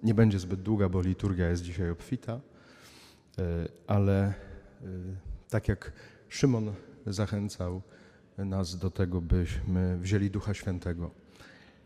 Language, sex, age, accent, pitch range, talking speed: Polish, male, 40-59, native, 90-110 Hz, 105 wpm